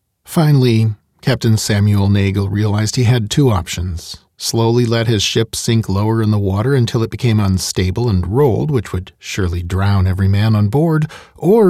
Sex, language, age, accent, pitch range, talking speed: male, English, 40-59, American, 105-140 Hz, 170 wpm